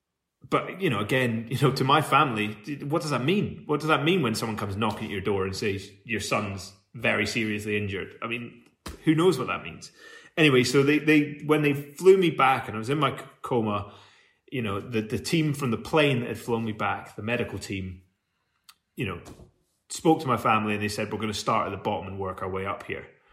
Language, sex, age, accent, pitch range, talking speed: English, male, 30-49, British, 105-125 Hz, 235 wpm